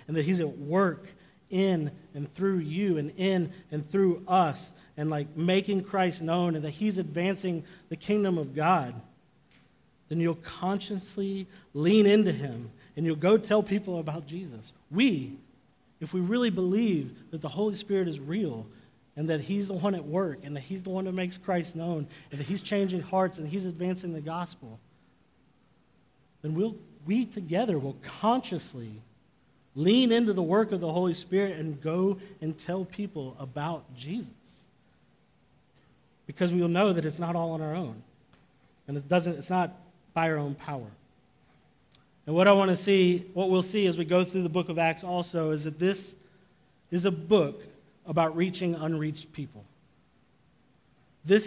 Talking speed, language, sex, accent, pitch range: 170 wpm, English, male, American, 155-190 Hz